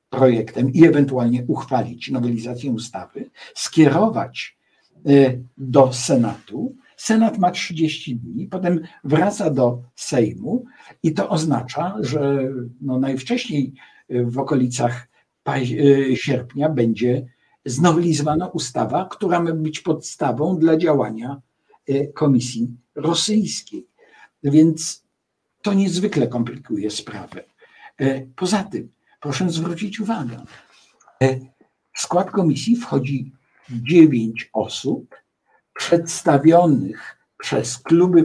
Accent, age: native, 60-79